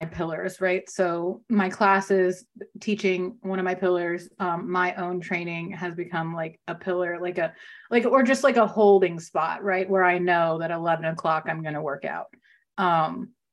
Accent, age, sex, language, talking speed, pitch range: American, 30-49, female, English, 175 wpm, 175-205 Hz